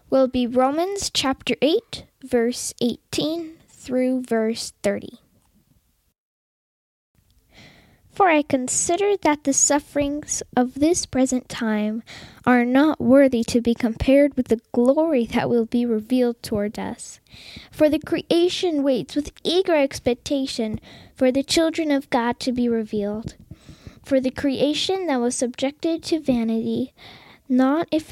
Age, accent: 10-29, American